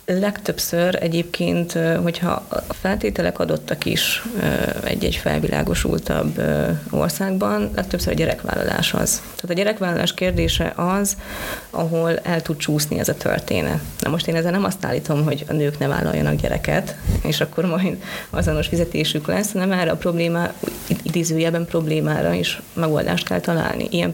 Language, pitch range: Hungarian, 155-190 Hz